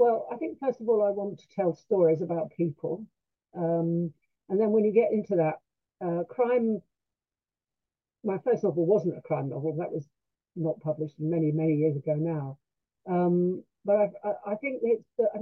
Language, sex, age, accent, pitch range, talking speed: English, female, 50-69, British, 160-205 Hz, 175 wpm